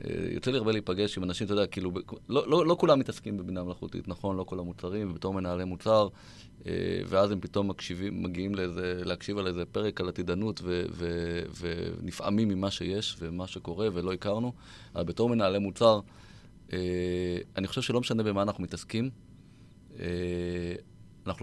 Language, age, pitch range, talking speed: Hebrew, 30-49, 90-105 Hz, 150 wpm